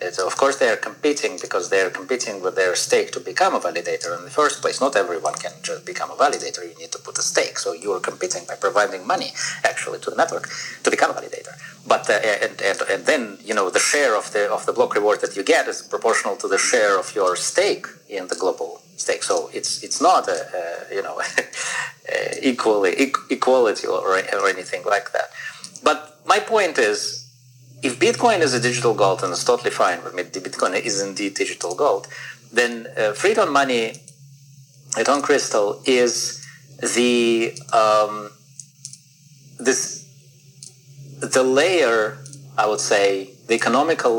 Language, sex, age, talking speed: English, male, 30-49, 180 wpm